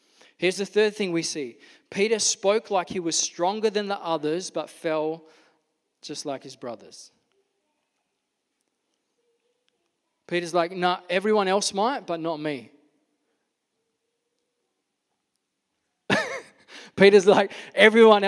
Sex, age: male, 20-39